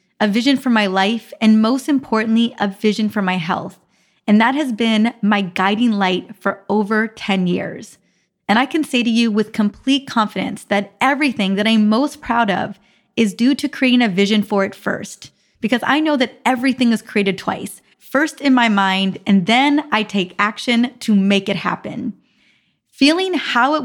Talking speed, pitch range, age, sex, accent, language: 185 wpm, 205-250 Hz, 20-39, female, American, English